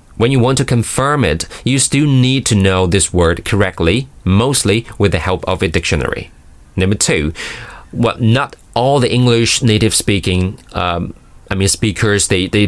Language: Chinese